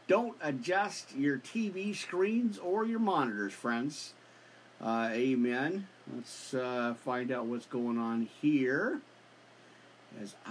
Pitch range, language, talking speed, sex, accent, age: 115-185 Hz, English, 115 wpm, male, American, 50-69